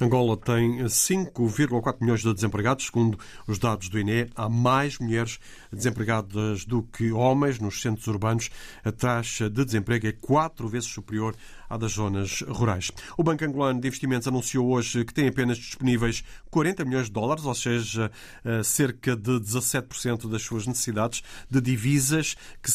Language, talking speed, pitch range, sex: Portuguese, 155 wpm, 115-135 Hz, male